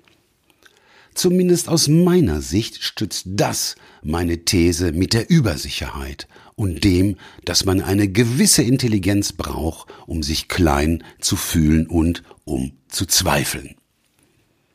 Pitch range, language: 85-115 Hz, German